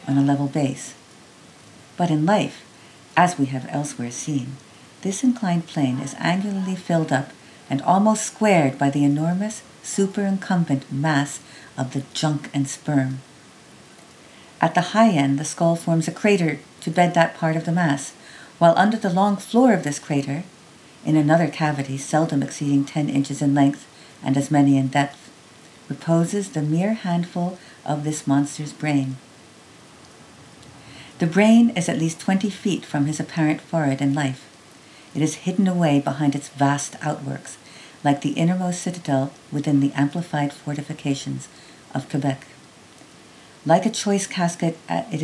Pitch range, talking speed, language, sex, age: 140-175 Hz, 150 wpm, English, female, 50-69